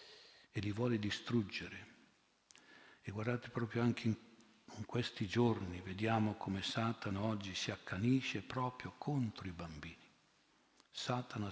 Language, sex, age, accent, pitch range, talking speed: Italian, male, 50-69, native, 95-120 Hz, 115 wpm